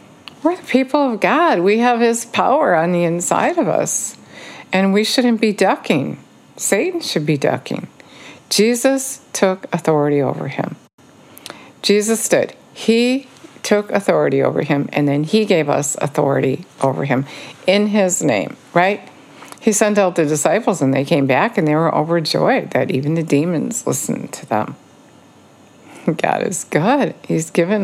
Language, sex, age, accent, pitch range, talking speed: English, female, 60-79, American, 145-210 Hz, 155 wpm